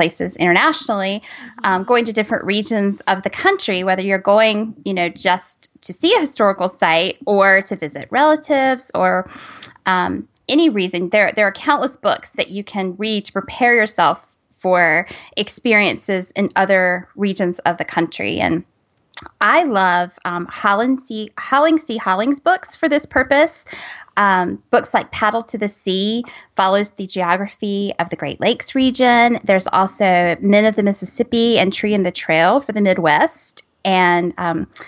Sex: female